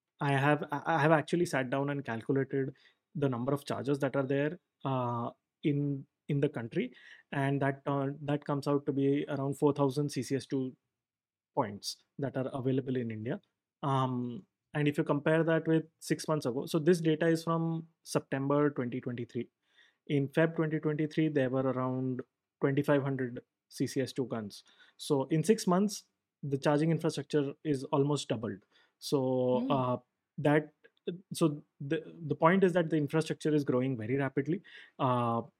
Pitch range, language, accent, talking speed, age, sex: 135-155 Hz, English, Indian, 150 wpm, 20-39, male